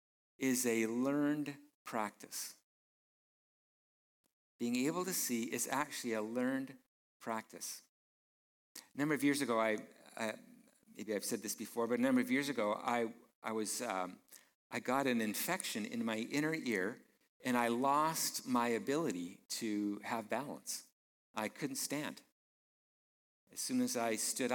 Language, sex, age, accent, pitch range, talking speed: English, male, 50-69, American, 115-145 Hz, 145 wpm